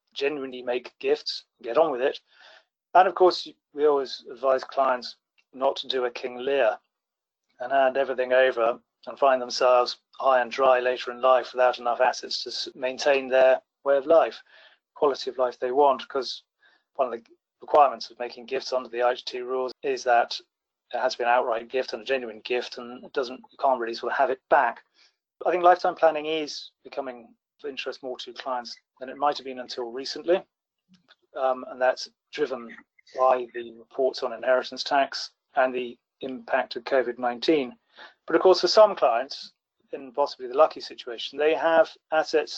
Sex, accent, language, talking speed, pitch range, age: male, British, English, 180 wpm, 125-160 Hz, 30-49